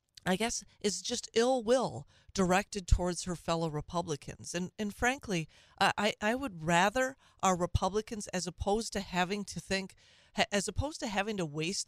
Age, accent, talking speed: 40-59, American, 160 wpm